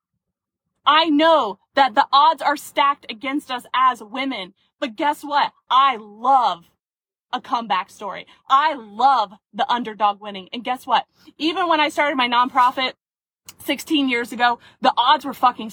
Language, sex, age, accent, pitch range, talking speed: English, female, 20-39, American, 245-330 Hz, 155 wpm